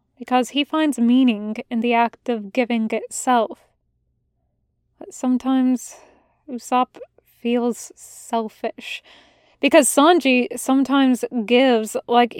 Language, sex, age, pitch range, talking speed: English, female, 10-29, 240-290 Hz, 95 wpm